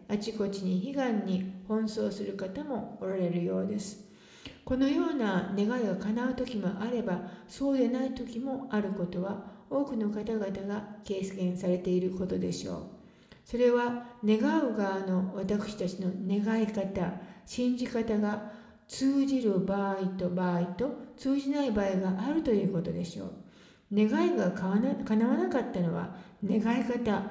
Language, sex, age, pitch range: English, female, 50-69, 190-245 Hz